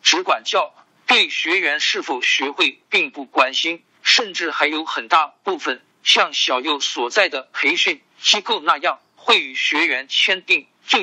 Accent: native